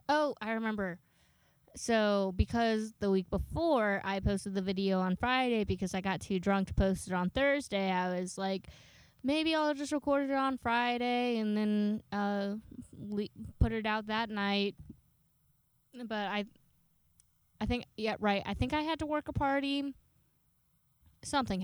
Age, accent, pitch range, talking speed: 10-29, American, 190-220 Hz, 160 wpm